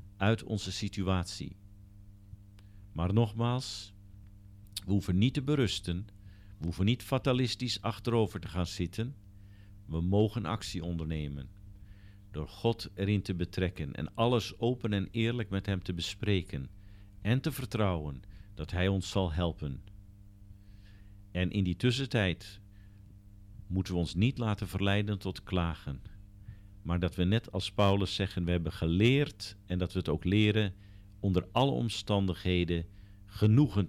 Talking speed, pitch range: 135 wpm, 90-105 Hz